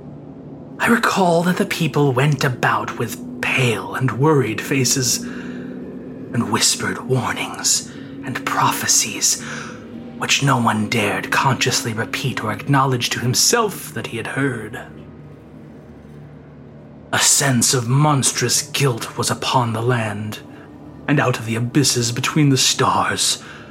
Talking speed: 120 wpm